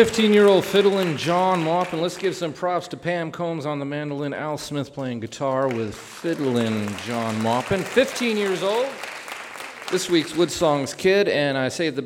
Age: 40-59